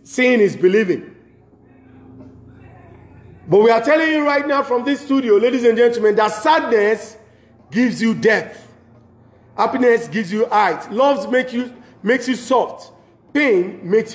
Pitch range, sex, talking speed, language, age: 185-245 Hz, male, 140 wpm, English, 40-59